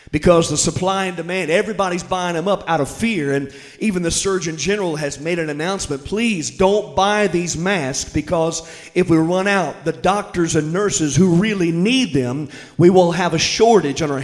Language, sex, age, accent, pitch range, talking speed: English, male, 50-69, American, 155-190 Hz, 195 wpm